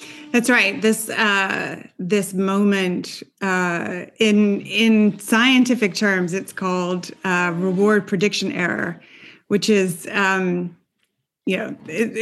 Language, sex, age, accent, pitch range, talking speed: Swedish, female, 30-49, American, 195-225 Hz, 110 wpm